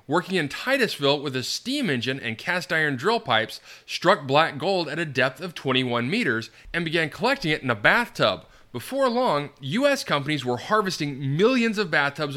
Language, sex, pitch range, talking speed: English, male, 130-205 Hz, 175 wpm